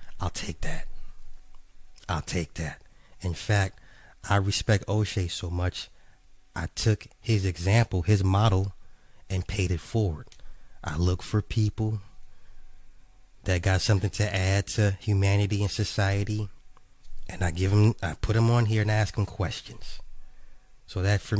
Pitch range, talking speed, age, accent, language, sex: 90-110 Hz, 145 wpm, 30-49, American, English, male